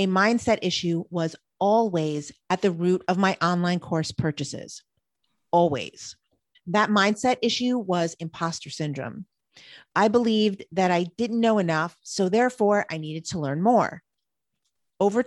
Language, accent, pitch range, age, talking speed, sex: English, American, 165-220 Hz, 40-59, 140 wpm, female